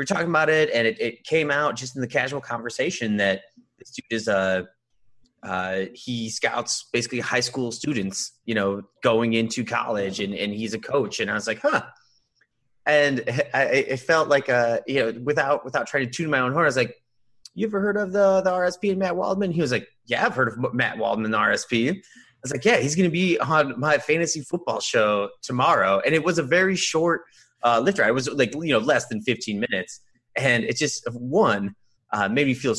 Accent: American